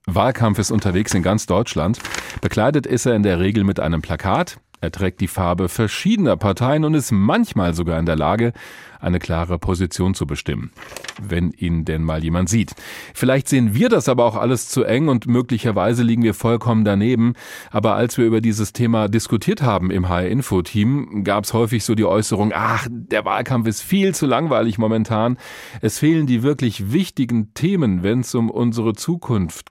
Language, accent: German, German